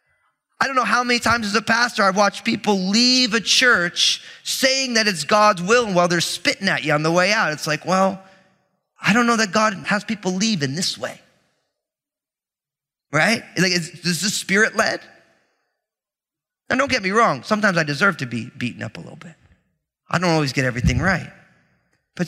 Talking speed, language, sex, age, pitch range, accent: 195 wpm, English, male, 30-49, 145-205 Hz, American